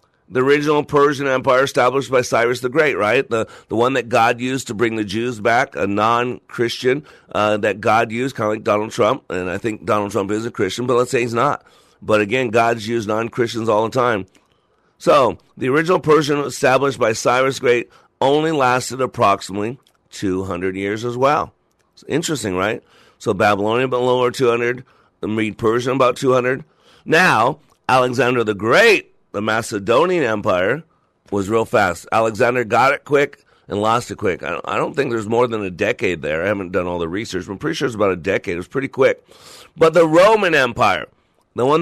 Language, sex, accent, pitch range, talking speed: English, male, American, 115-135 Hz, 190 wpm